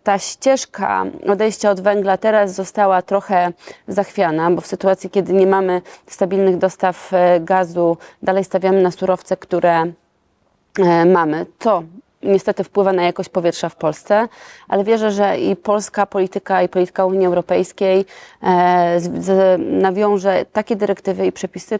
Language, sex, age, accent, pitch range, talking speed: Polish, female, 20-39, native, 180-200 Hz, 130 wpm